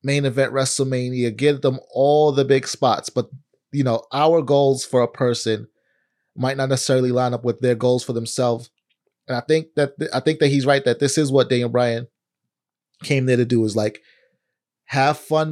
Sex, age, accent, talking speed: male, 30-49, American, 195 wpm